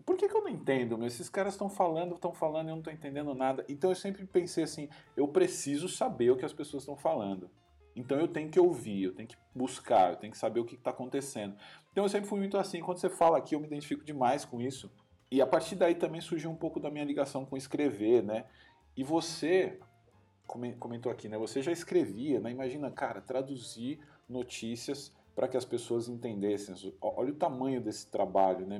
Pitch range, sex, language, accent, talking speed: 110-145 Hz, male, Portuguese, Brazilian, 215 wpm